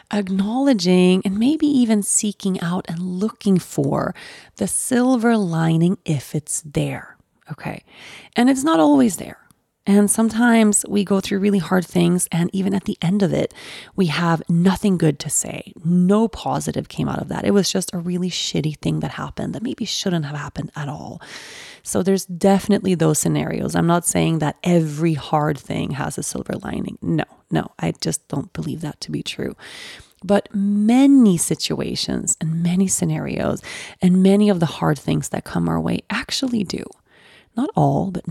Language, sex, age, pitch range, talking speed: English, female, 30-49, 160-215 Hz, 175 wpm